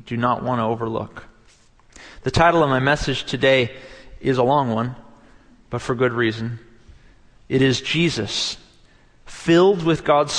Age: 40-59